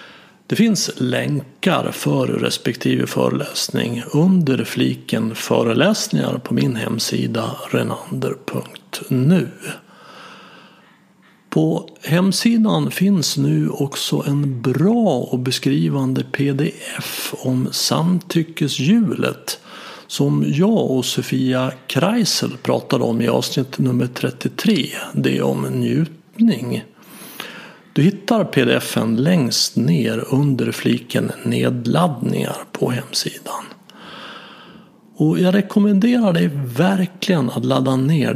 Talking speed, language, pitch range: 90 wpm, Swedish, 125-190 Hz